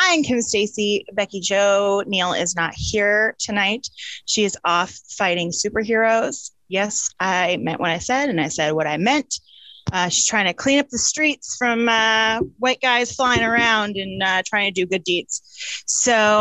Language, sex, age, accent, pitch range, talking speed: English, female, 30-49, American, 185-245 Hz, 180 wpm